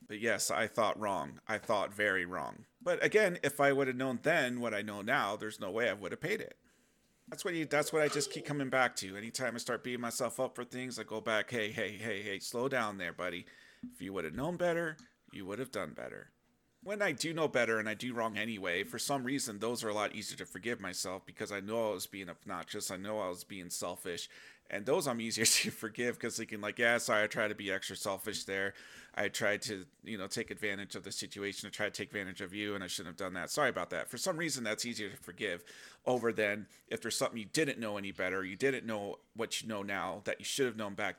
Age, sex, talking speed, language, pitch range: 30-49, male, 255 wpm, English, 105-130 Hz